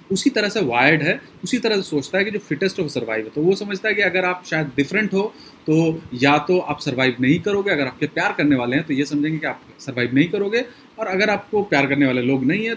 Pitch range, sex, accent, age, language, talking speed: 140-190 Hz, male, native, 30-49, Hindi, 260 wpm